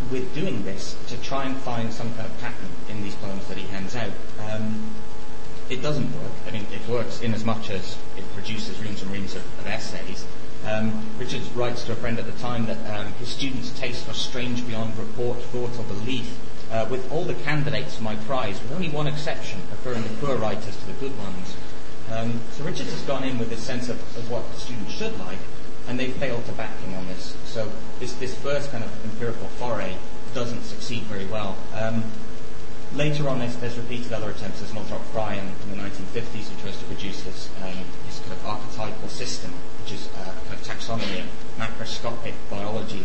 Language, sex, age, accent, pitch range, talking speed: English, male, 30-49, British, 105-120 Hz, 210 wpm